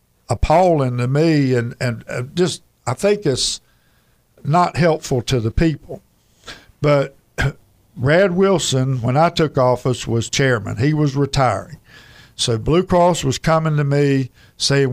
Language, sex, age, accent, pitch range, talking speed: English, male, 60-79, American, 120-155 Hz, 135 wpm